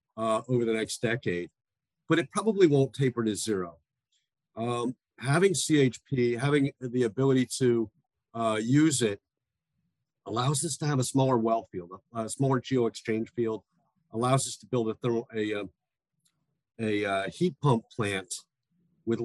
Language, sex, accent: English, male, American